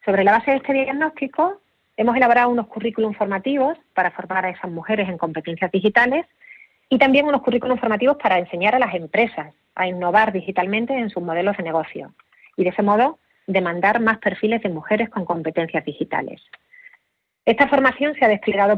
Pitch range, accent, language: 180-250 Hz, Spanish, Spanish